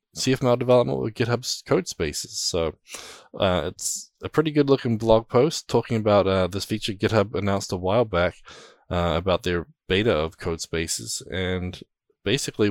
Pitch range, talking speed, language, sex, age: 90-105 Hz, 160 wpm, English, male, 20-39